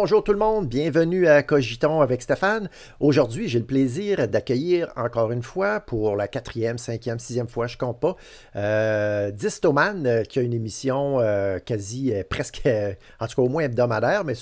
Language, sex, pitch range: French, male, 110-140 Hz